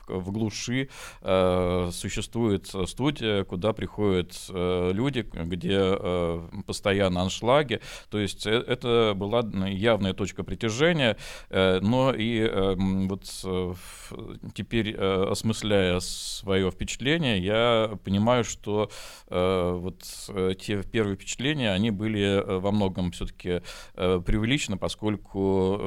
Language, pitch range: Russian, 95-110 Hz